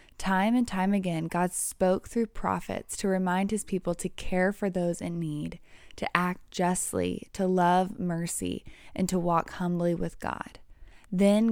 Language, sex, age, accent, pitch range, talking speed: English, female, 20-39, American, 170-200 Hz, 160 wpm